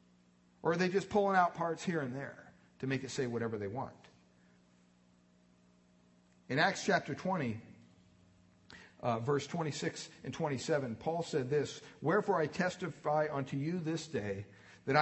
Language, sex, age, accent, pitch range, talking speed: English, male, 50-69, American, 120-180 Hz, 150 wpm